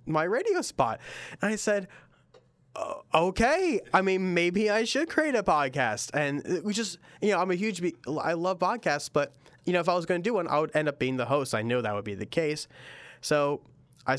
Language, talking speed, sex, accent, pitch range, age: English, 230 wpm, male, American, 115-150 Hz, 20-39